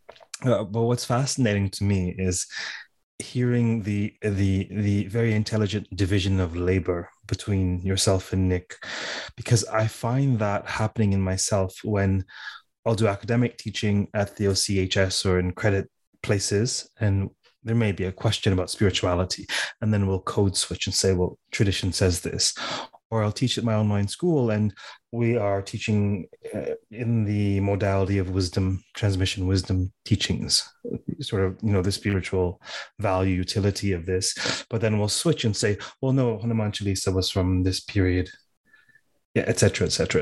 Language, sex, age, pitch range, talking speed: English, male, 30-49, 95-115 Hz, 155 wpm